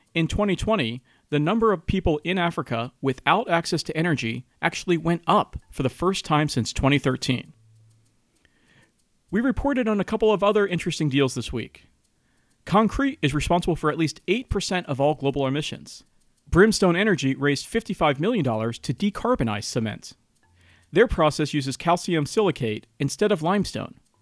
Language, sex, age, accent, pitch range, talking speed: English, male, 40-59, American, 130-185 Hz, 145 wpm